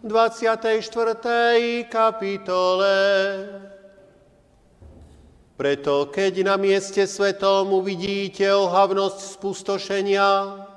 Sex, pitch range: male, 195-220 Hz